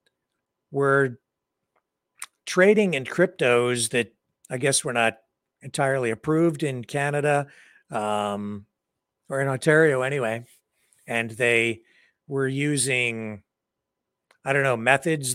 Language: English